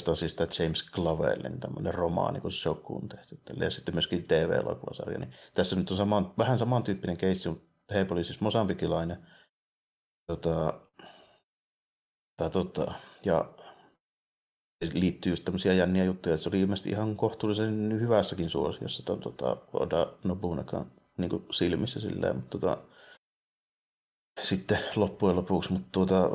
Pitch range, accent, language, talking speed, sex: 90-105 Hz, native, Finnish, 135 wpm, male